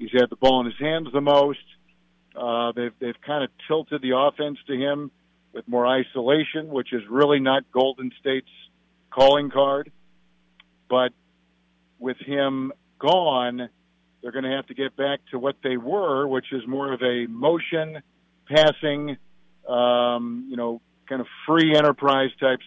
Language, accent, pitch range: English, American, 115-140 Hz